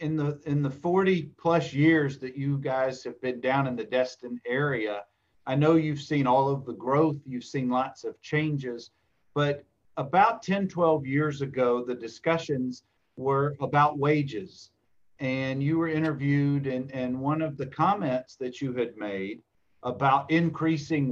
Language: English